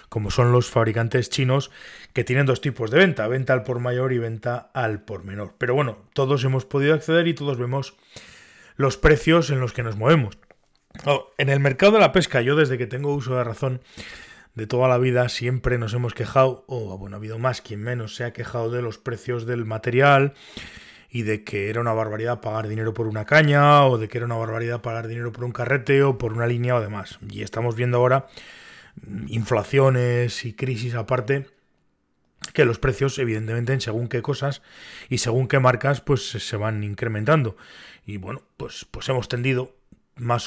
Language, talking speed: Spanish, 195 wpm